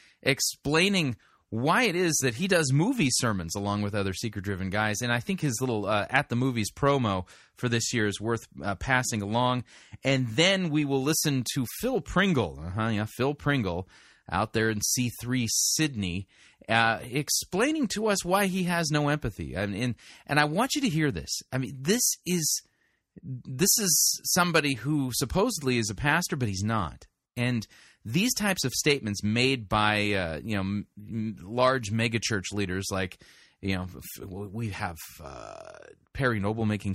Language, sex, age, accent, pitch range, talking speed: English, male, 30-49, American, 100-140 Hz, 170 wpm